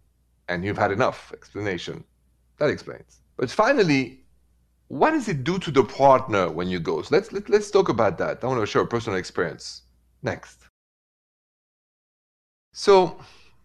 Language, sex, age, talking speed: English, male, 40-59, 145 wpm